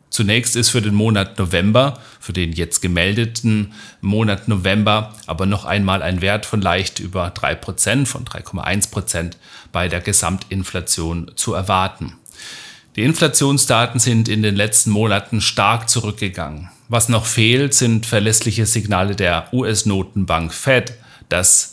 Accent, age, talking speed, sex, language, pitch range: German, 40-59, 130 wpm, male, German, 100-120 Hz